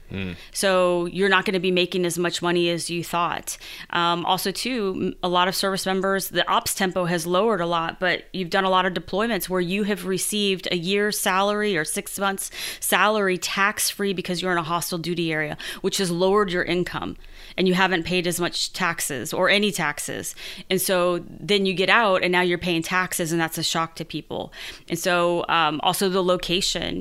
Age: 20-39